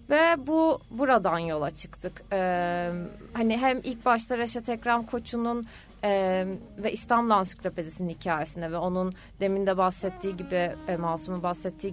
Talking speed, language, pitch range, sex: 135 wpm, Turkish, 175-200 Hz, female